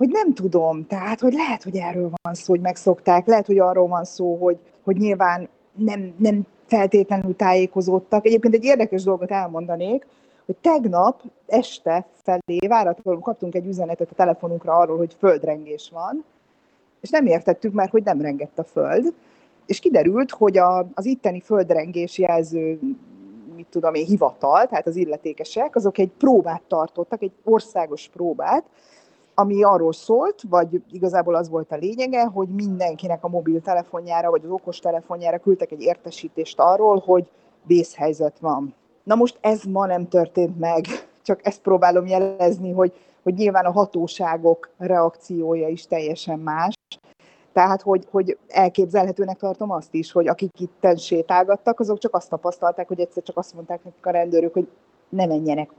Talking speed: 155 wpm